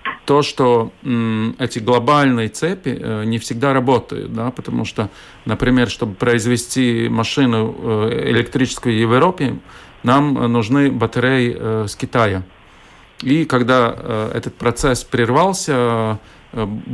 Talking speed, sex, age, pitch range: 120 wpm, male, 40-59, 115-135 Hz